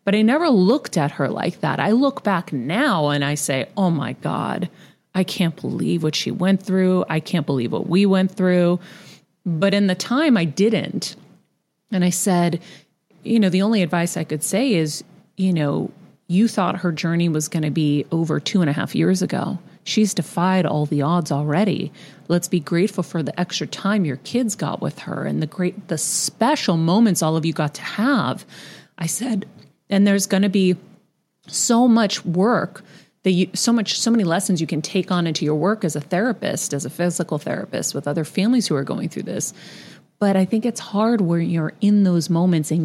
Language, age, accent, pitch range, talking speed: English, 30-49, American, 155-195 Hz, 205 wpm